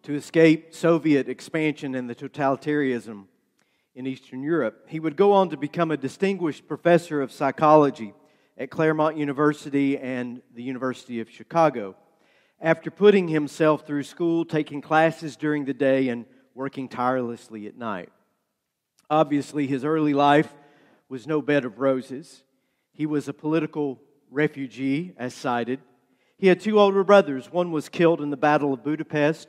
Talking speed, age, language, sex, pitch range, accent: 150 wpm, 50-69, English, male, 130-155 Hz, American